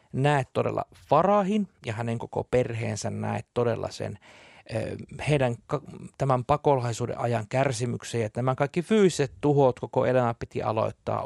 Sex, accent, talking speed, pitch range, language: male, native, 130 wpm, 115-160 Hz, Finnish